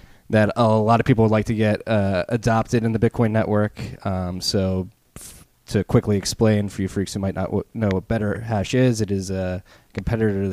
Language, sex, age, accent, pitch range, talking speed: English, male, 20-39, American, 95-110 Hz, 195 wpm